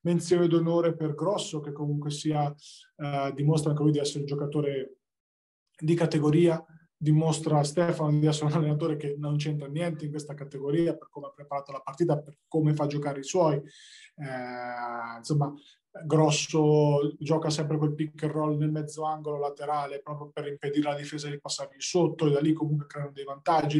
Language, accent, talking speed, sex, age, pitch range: Italian, native, 185 wpm, male, 20-39, 150-175 Hz